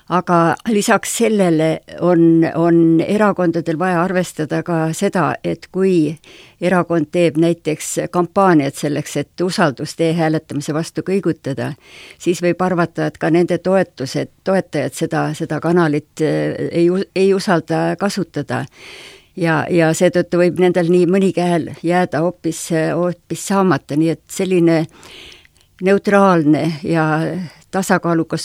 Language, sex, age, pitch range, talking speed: English, female, 60-79, 155-180 Hz, 115 wpm